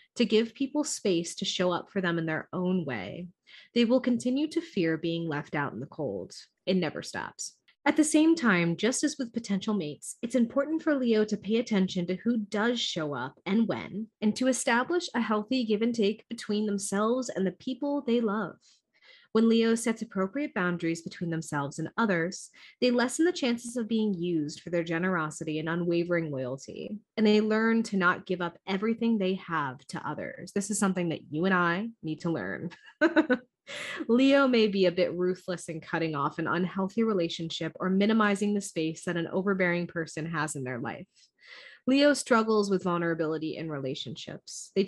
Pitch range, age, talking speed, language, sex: 170-230 Hz, 20-39, 185 wpm, English, female